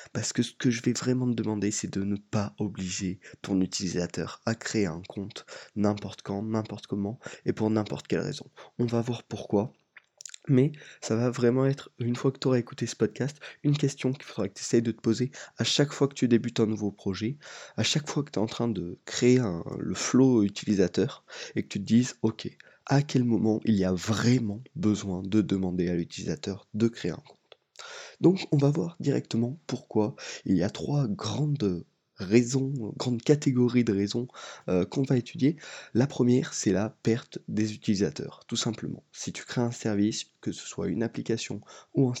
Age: 20-39